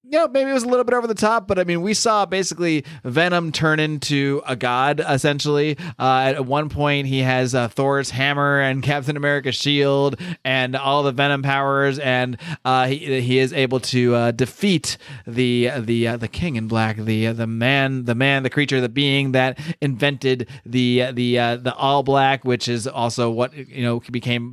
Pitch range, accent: 125-145 Hz, American